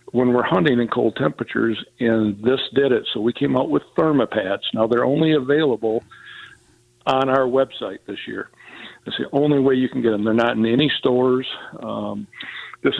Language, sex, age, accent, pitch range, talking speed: English, male, 50-69, American, 115-130 Hz, 185 wpm